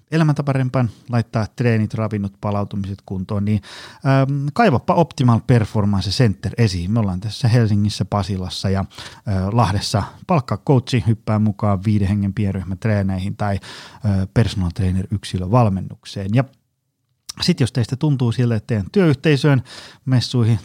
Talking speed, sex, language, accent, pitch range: 115 wpm, male, Finnish, native, 100-130 Hz